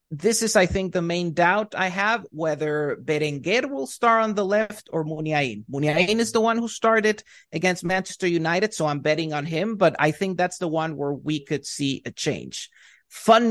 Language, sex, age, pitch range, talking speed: English, male, 30-49, 145-190 Hz, 200 wpm